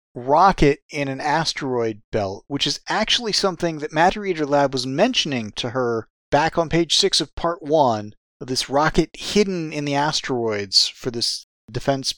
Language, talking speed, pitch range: English, 170 wpm, 135-175 Hz